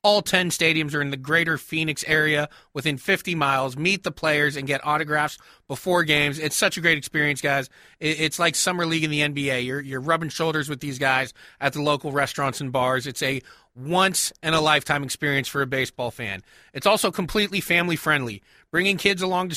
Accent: American